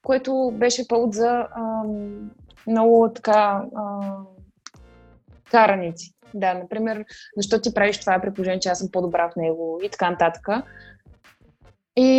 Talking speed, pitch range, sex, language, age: 130 wpm, 190-235 Hz, female, Bulgarian, 20-39